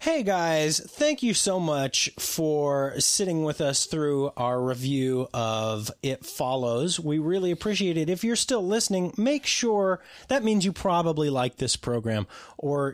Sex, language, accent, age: male, English, American, 30-49